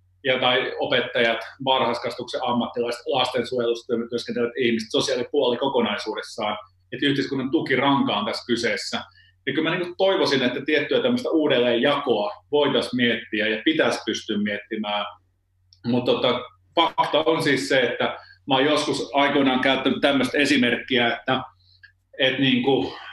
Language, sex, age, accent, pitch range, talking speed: Finnish, male, 30-49, native, 100-130 Hz, 120 wpm